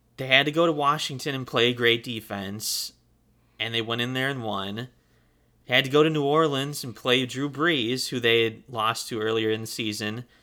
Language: English